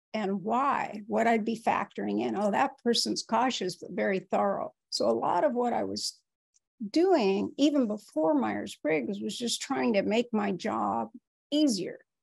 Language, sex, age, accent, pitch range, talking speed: English, female, 60-79, American, 195-255 Hz, 160 wpm